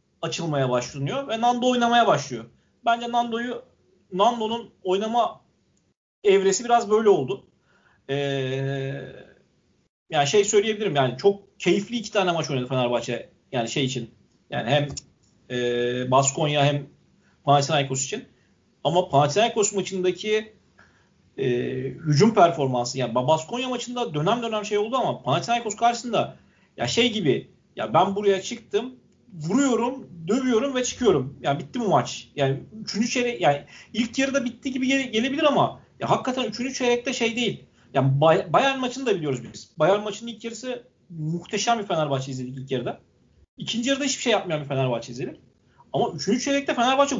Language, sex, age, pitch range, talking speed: Turkish, male, 40-59, 145-235 Hz, 140 wpm